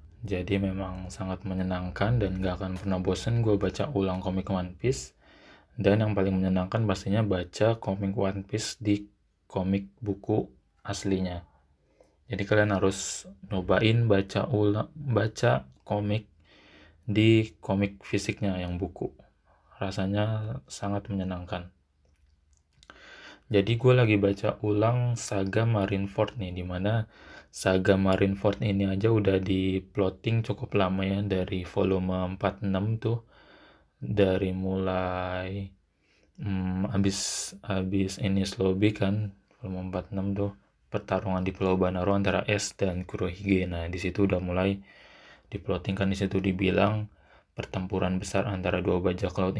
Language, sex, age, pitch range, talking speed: Indonesian, male, 20-39, 95-105 Hz, 120 wpm